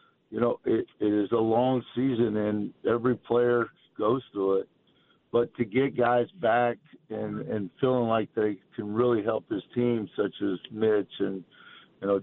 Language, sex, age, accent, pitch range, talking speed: English, male, 50-69, American, 105-130 Hz, 170 wpm